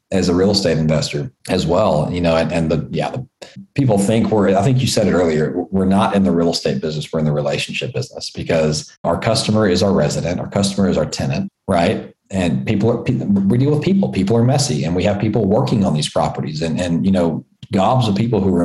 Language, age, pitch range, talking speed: English, 40-59, 90-115 Hz, 235 wpm